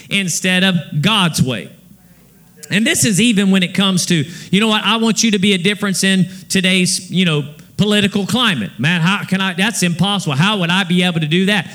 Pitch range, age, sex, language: 180-225 Hz, 40-59, male, English